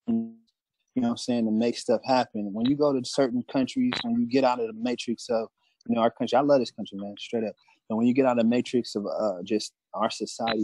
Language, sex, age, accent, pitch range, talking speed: English, male, 30-49, American, 105-125 Hz, 260 wpm